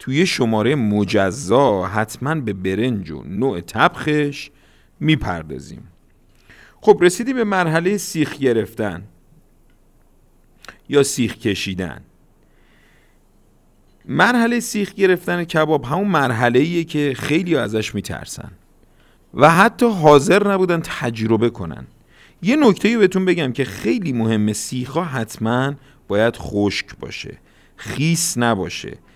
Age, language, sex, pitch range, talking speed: 50-69, Persian, male, 110-165 Hz, 105 wpm